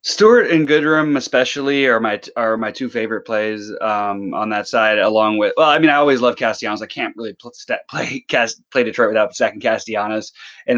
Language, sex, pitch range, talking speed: English, male, 100-130 Hz, 200 wpm